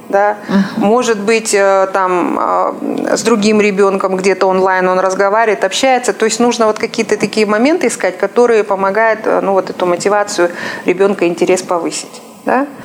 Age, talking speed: 30-49, 115 wpm